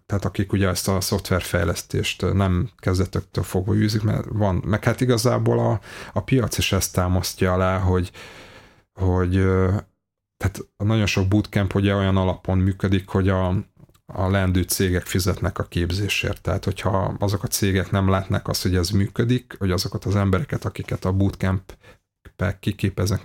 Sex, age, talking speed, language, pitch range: male, 30-49, 150 wpm, Hungarian, 95-105 Hz